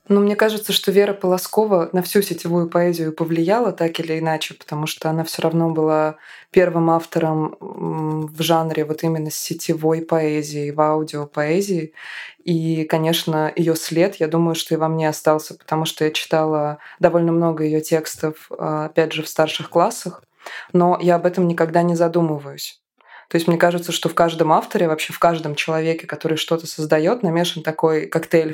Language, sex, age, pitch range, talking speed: Russian, female, 20-39, 155-175 Hz, 170 wpm